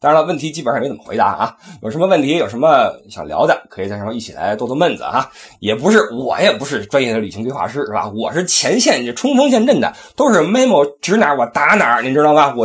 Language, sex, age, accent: Chinese, male, 20-39, native